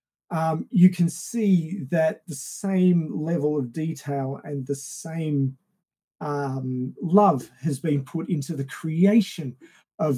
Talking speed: 130 wpm